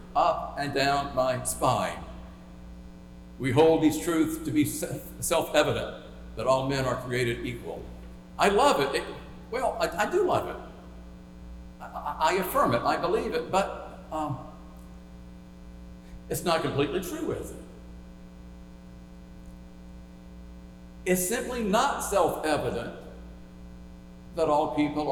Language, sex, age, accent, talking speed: English, male, 60-79, American, 120 wpm